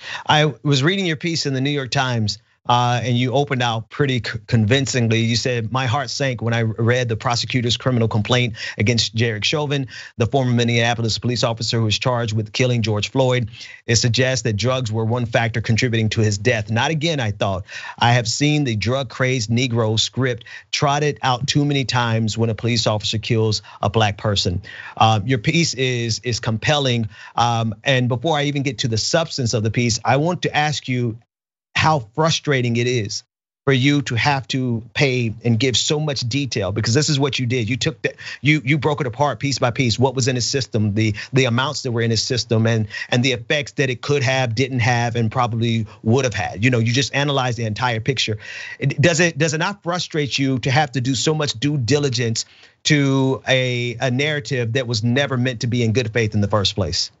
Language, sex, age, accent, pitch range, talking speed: English, male, 40-59, American, 115-140 Hz, 215 wpm